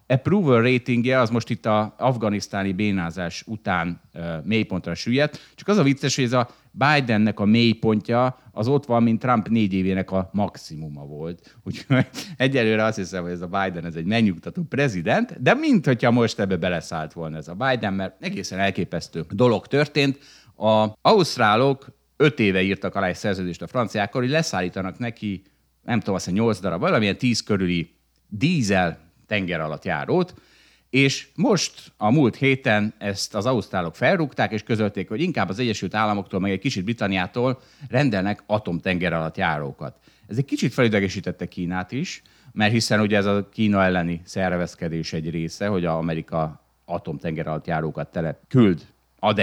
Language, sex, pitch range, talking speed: Hungarian, male, 90-125 Hz, 155 wpm